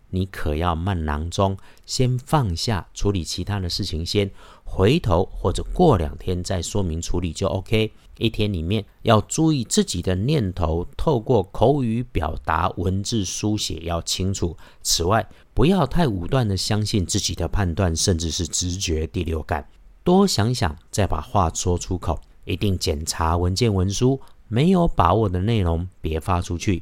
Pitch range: 90-115 Hz